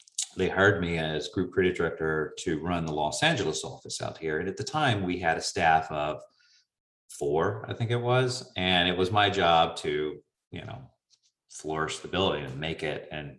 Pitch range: 80-100 Hz